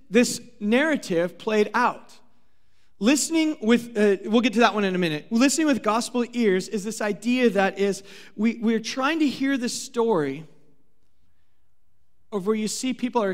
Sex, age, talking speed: male, 40-59, 165 wpm